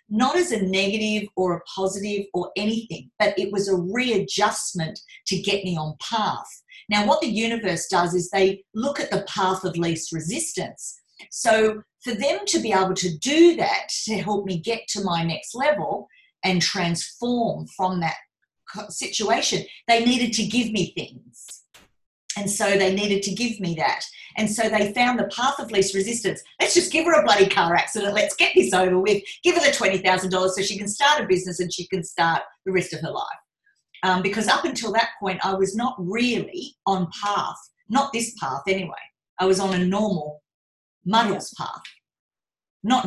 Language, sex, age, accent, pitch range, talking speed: English, female, 40-59, Australian, 180-225 Hz, 185 wpm